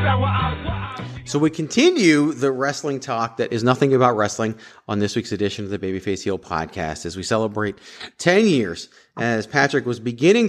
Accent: American